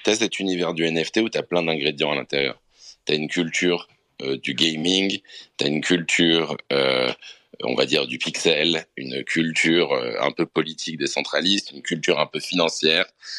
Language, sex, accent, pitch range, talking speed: English, male, French, 80-100 Hz, 190 wpm